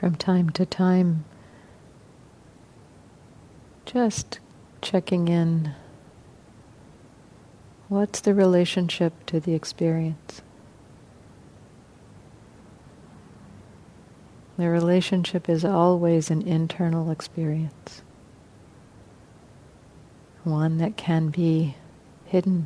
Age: 50-69